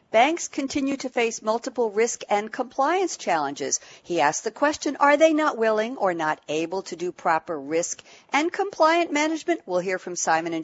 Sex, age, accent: female, 60-79, American